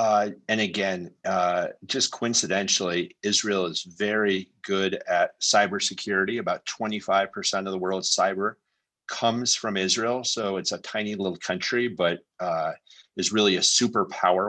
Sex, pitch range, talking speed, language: male, 90-105 Hz, 135 wpm, English